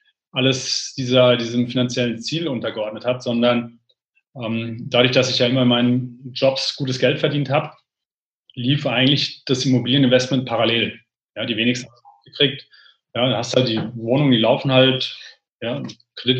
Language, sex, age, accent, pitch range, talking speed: German, male, 30-49, German, 120-135 Hz, 155 wpm